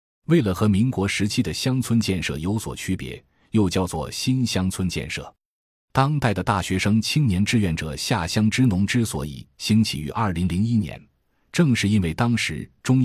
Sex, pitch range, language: male, 85-115 Hz, Chinese